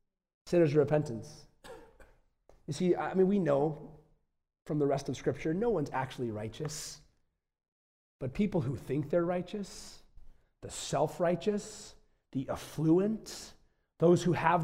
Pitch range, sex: 140-210 Hz, male